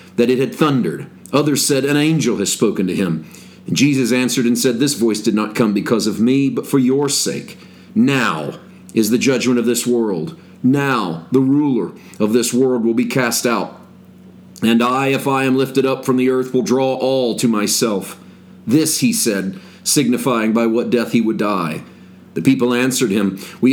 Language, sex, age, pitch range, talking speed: English, male, 40-59, 110-135 Hz, 190 wpm